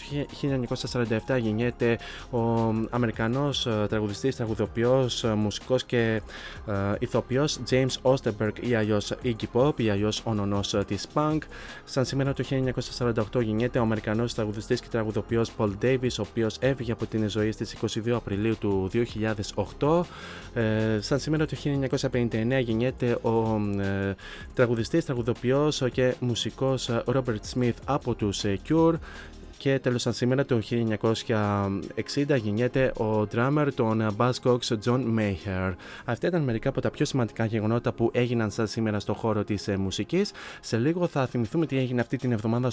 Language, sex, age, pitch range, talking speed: Greek, male, 20-39, 110-130 Hz, 140 wpm